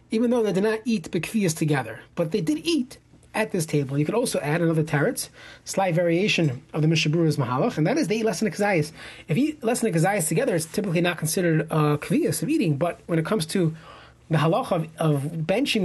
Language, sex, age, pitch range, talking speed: English, male, 30-49, 160-225 Hz, 225 wpm